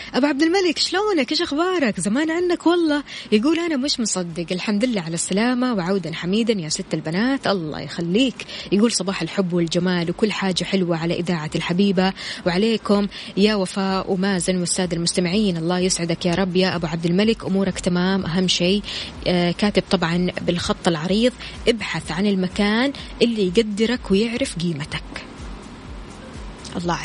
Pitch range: 180-225 Hz